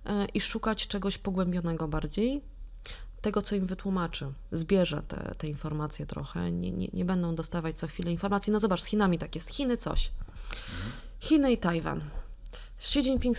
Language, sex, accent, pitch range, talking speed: Polish, female, native, 170-225 Hz, 155 wpm